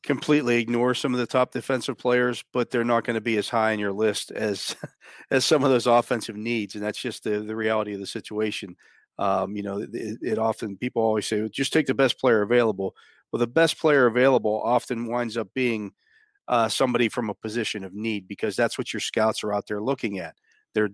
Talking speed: 220 wpm